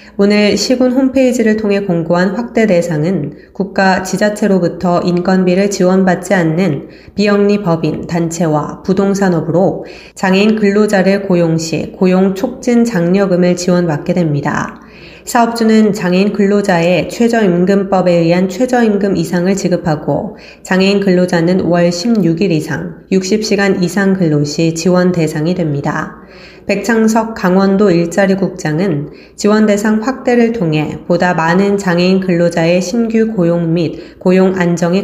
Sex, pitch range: female, 170-205 Hz